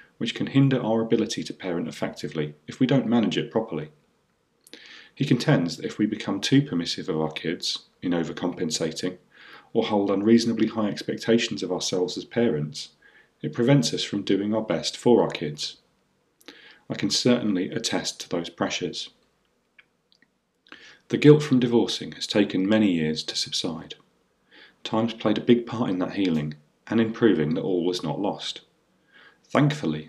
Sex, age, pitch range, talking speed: male, 40-59, 85-120 Hz, 160 wpm